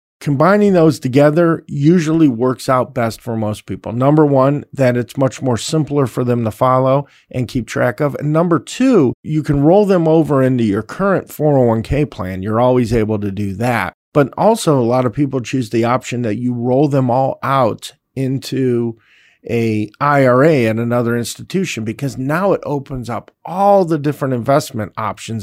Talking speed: 175 wpm